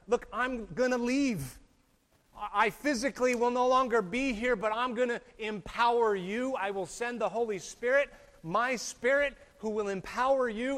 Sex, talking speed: male, 165 wpm